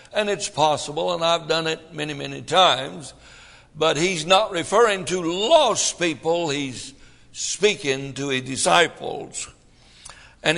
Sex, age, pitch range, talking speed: male, 60-79, 130-180 Hz, 130 wpm